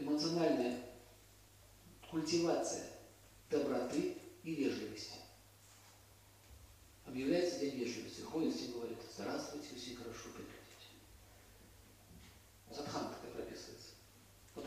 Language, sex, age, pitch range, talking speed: Russian, male, 50-69, 100-135 Hz, 80 wpm